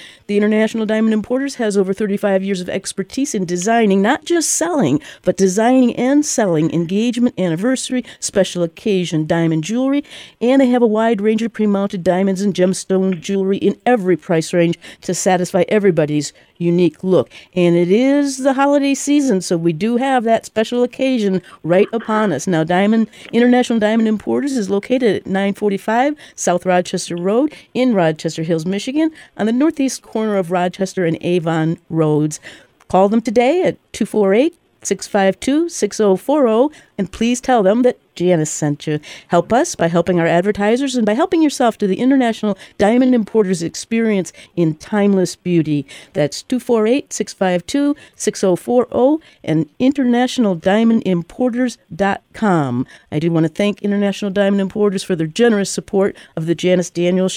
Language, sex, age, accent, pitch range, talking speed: English, female, 50-69, American, 180-245 Hz, 145 wpm